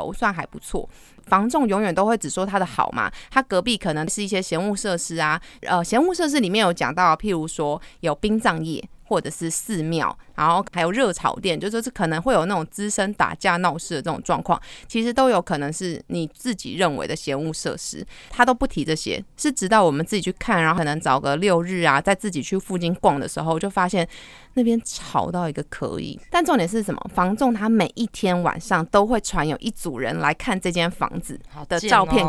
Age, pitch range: 30-49, 165-225 Hz